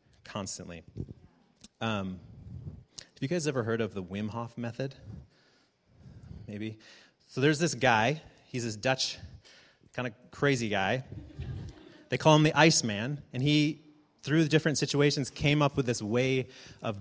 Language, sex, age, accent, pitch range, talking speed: English, male, 30-49, American, 110-140 Hz, 150 wpm